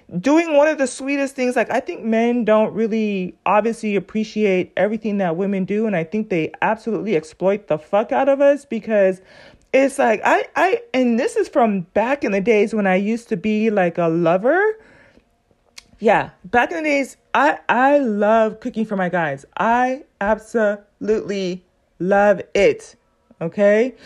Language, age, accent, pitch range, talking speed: English, 30-49, American, 195-250 Hz, 165 wpm